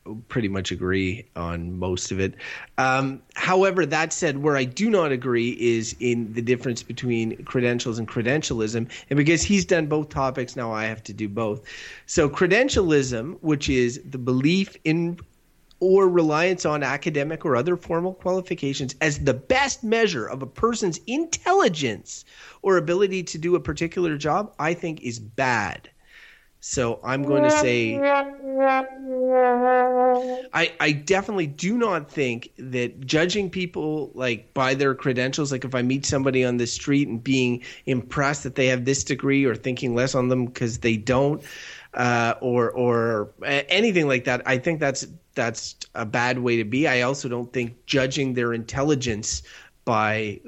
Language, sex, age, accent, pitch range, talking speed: English, male, 30-49, American, 120-165 Hz, 160 wpm